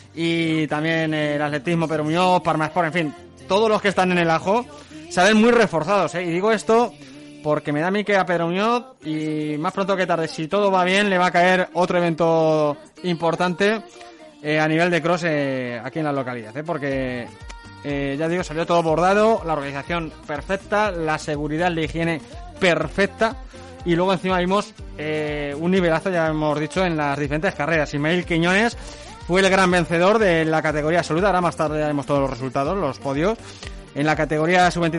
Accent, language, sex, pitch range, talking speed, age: Spanish, Spanish, male, 150-180 Hz, 190 wpm, 20-39